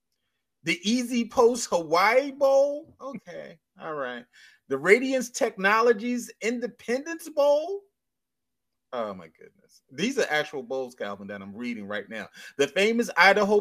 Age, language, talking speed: 30-49, English, 130 wpm